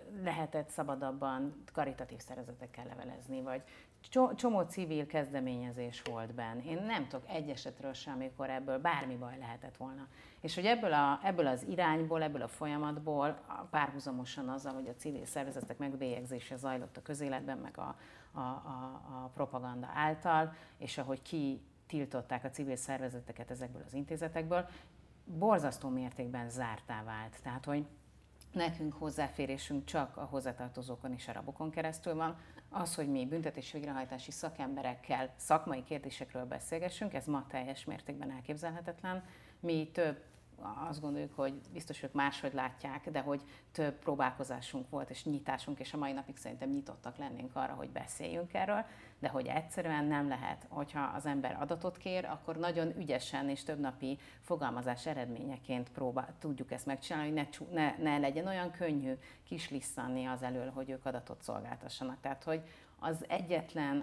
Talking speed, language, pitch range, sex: 145 wpm, Hungarian, 130-155 Hz, female